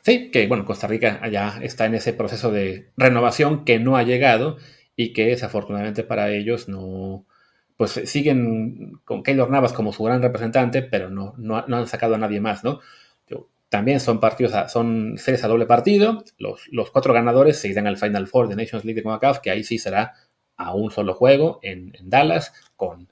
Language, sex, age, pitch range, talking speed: English, male, 30-49, 110-130 Hz, 195 wpm